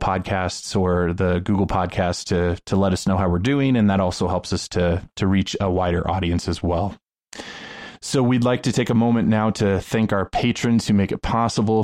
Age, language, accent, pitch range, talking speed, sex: 20-39, English, American, 95-115 Hz, 215 wpm, male